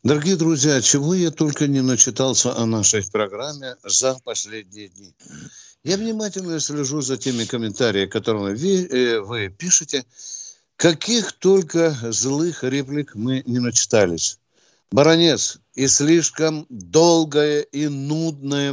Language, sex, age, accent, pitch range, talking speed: Russian, male, 60-79, native, 140-190 Hz, 115 wpm